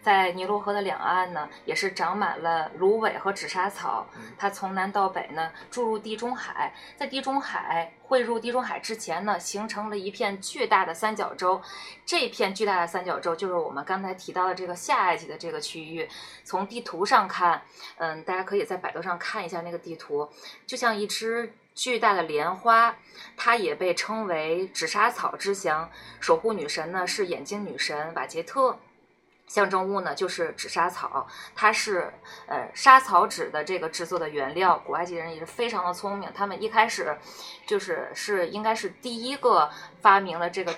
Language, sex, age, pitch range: Chinese, female, 20-39, 170-225 Hz